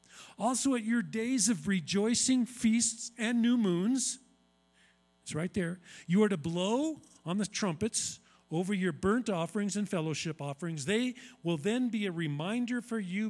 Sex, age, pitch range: male, 40-59, 145-225 Hz